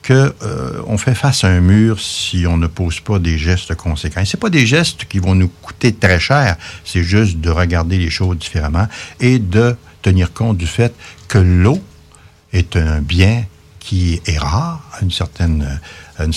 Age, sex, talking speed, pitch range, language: 60-79, male, 185 wpm, 85-110 Hz, French